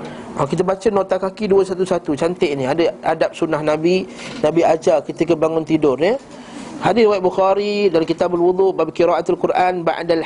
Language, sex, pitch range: Malay, male, 150-190 Hz